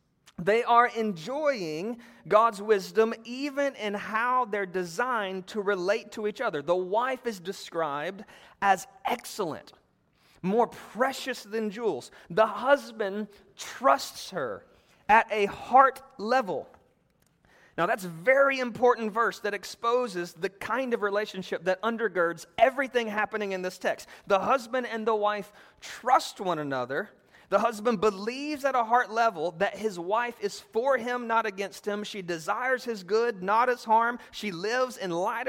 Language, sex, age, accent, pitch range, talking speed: English, male, 30-49, American, 200-245 Hz, 145 wpm